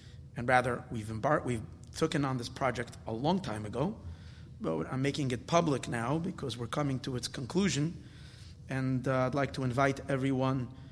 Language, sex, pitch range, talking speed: English, male, 120-145 Hz, 175 wpm